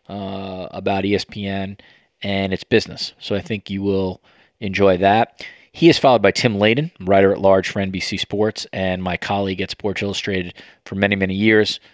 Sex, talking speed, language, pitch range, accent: male, 175 wpm, English, 95-105 Hz, American